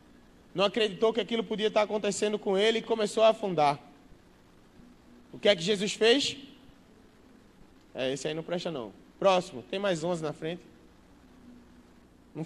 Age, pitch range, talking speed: 20-39, 160-215 Hz, 155 wpm